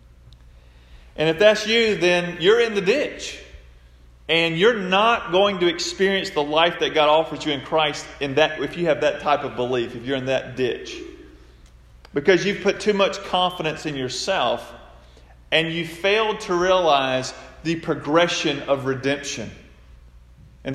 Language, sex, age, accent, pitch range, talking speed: English, male, 40-59, American, 115-175 Hz, 155 wpm